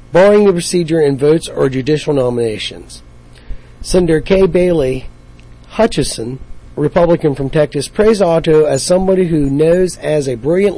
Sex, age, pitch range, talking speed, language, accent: male, 40-59, 130-180 Hz, 135 wpm, English, American